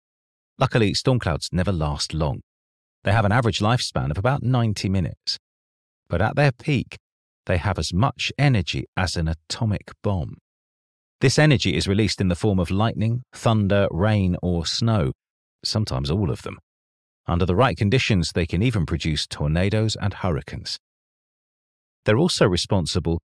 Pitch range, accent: 80-115 Hz, British